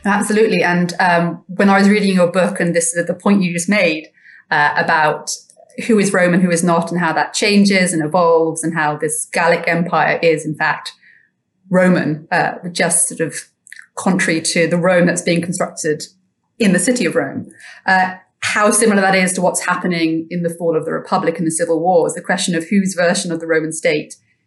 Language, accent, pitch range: English, British, 165-195 Hz